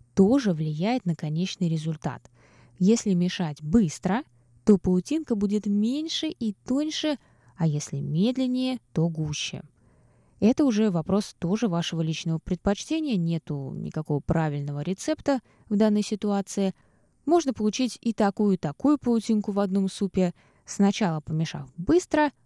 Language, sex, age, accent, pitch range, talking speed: Russian, female, 20-39, native, 165-230 Hz, 120 wpm